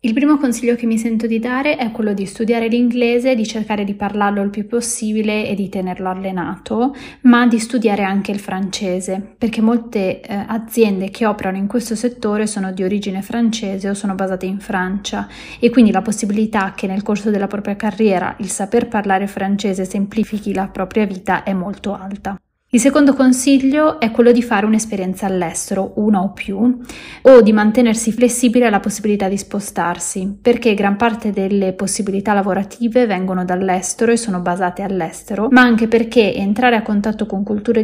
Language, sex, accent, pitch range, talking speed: Italian, female, native, 195-230 Hz, 175 wpm